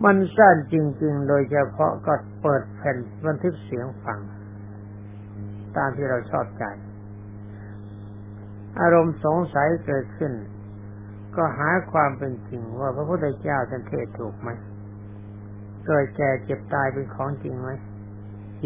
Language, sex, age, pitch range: Thai, male, 60-79, 105-145 Hz